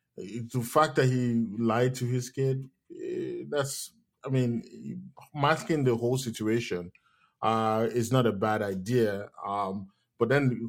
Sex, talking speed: male, 140 wpm